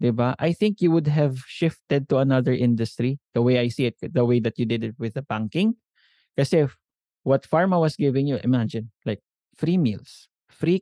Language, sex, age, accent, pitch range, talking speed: English, male, 20-39, Filipino, 125-175 Hz, 200 wpm